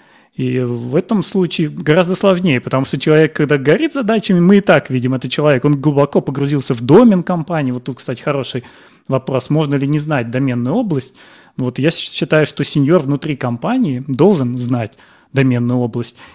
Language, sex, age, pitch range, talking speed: Ukrainian, male, 30-49, 130-175 Hz, 170 wpm